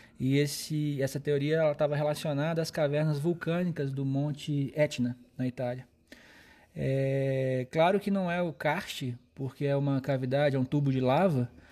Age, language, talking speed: 20-39, Portuguese, 155 wpm